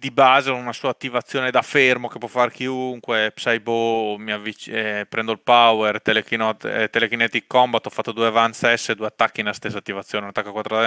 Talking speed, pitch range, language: 180 wpm, 110-125 Hz, Italian